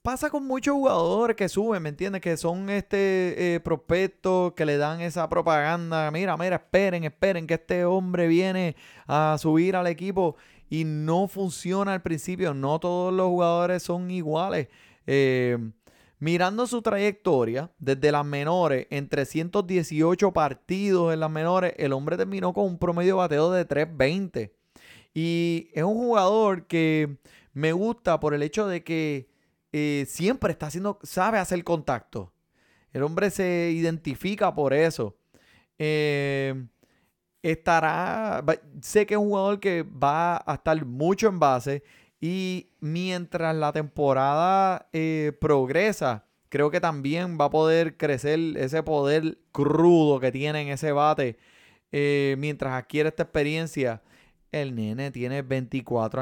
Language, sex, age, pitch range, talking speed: Spanish, male, 30-49, 145-180 Hz, 140 wpm